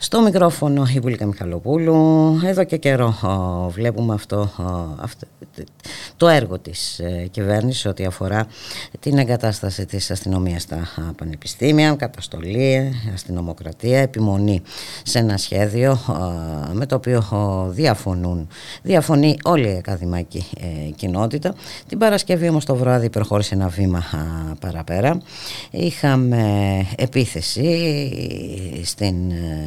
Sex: female